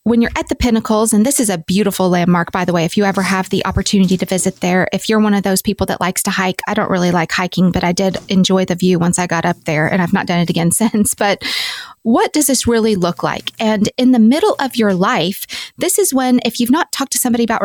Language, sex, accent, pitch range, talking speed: English, female, American, 195-245 Hz, 270 wpm